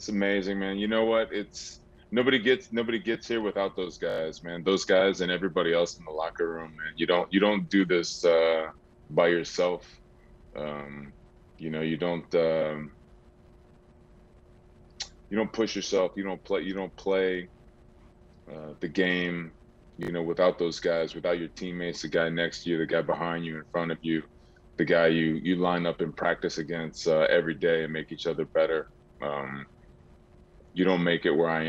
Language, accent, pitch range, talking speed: English, American, 80-95 Hz, 185 wpm